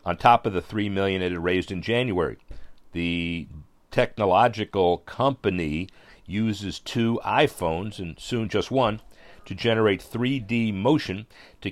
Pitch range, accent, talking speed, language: 90-110 Hz, American, 135 wpm, English